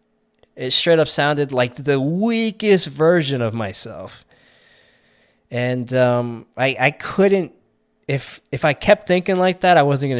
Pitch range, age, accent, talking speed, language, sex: 120-160 Hz, 20-39, American, 145 wpm, English, male